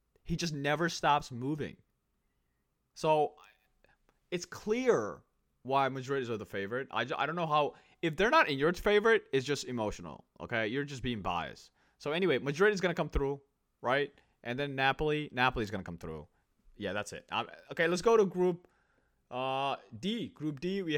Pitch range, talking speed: 110-155 Hz, 180 wpm